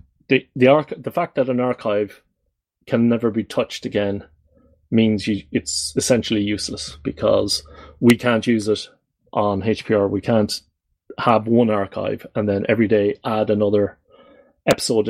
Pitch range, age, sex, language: 105-120 Hz, 30-49, male, English